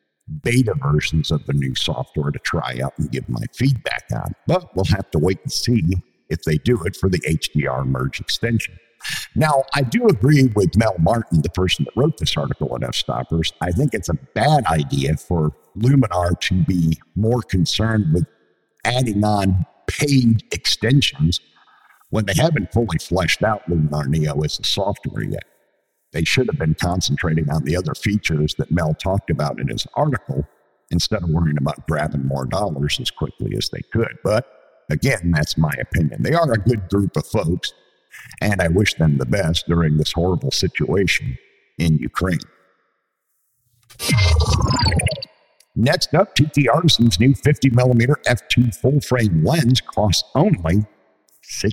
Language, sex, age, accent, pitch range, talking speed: English, male, 50-69, American, 80-120 Hz, 160 wpm